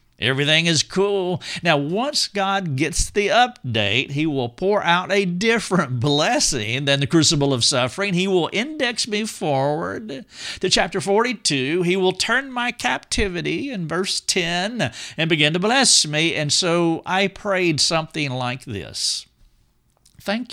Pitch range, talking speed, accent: 135-200 Hz, 145 wpm, American